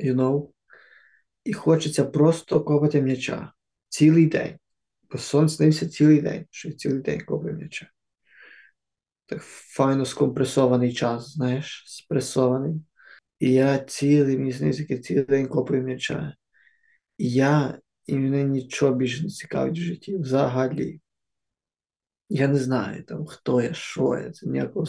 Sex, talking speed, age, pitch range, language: male, 125 wpm, 20-39, 130-150 Hz, Ukrainian